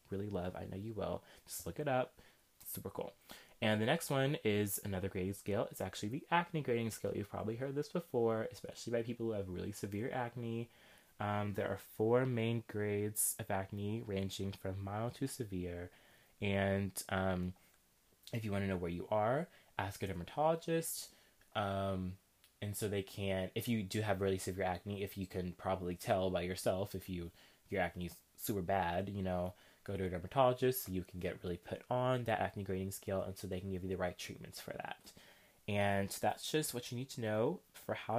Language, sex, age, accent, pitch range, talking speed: English, male, 20-39, American, 95-115 Hz, 205 wpm